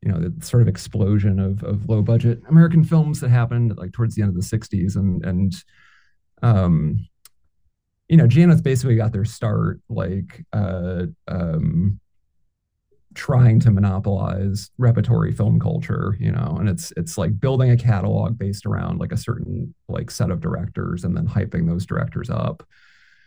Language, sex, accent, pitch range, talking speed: English, male, American, 100-130 Hz, 165 wpm